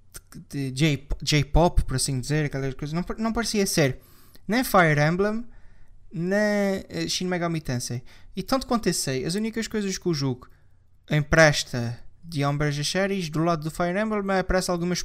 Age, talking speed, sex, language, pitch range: 20-39, 160 wpm, male, Portuguese, 135-185 Hz